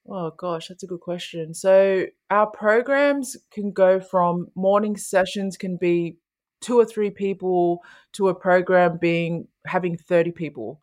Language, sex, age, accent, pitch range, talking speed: English, female, 20-39, Australian, 175-200 Hz, 150 wpm